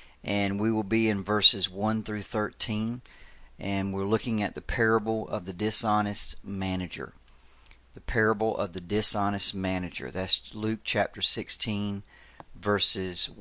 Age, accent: 40-59, American